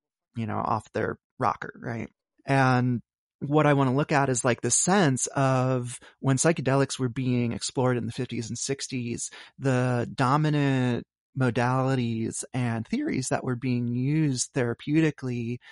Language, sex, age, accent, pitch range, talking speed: English, male, 30-49, American, 120-135 Hz, 145 wpm